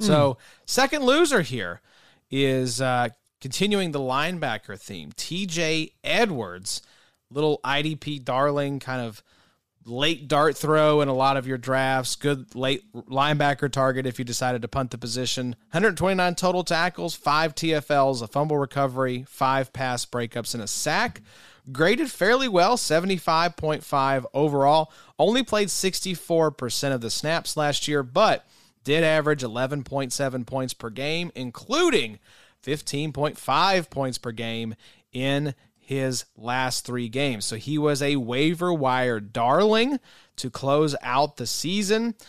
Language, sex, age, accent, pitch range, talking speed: English, male, 30-49, American, 130-165 Hz, 130 wpm